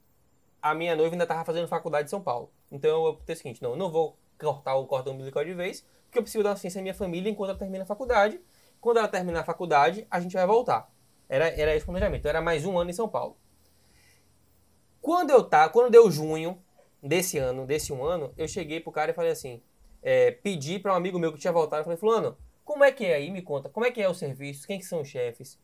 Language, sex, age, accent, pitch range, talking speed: Portuguese, male, 20-39, Brazilian, 155-205 Hz, 255 wpm